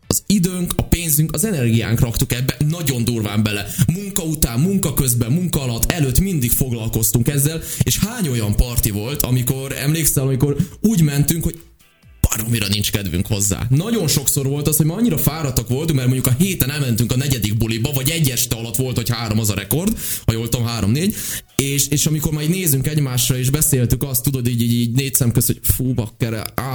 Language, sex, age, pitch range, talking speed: Hungarian, male, 20-39, 115-150 Hz, 195 wpm